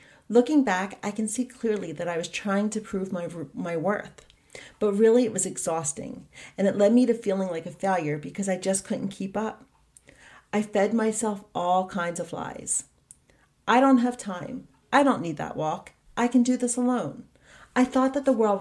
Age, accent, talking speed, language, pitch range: 40-59, American, 195 wpm, English, 190-240 Hz